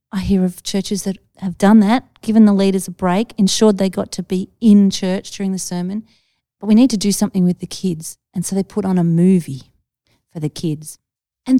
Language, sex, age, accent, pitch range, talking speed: English, female, 40-59, Australian, 175-215 Hz, 220 wpm